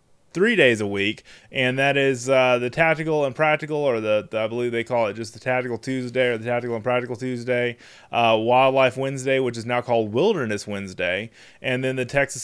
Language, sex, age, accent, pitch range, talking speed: English, male, 20-39, American, 110-130 Hz, 205 wpm